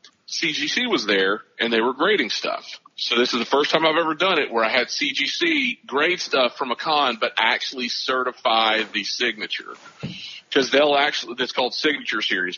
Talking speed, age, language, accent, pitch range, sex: 185 wpm, 40-59, English, American, 125-180 Hz, male